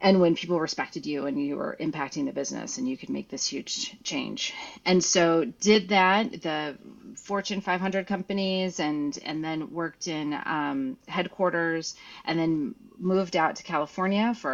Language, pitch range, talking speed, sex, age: English, 160-210 Hz, 165 wpm, female, 30-49